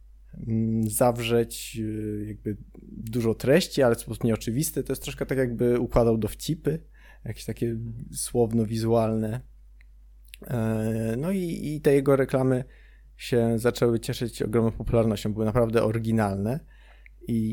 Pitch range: 110-125 Hz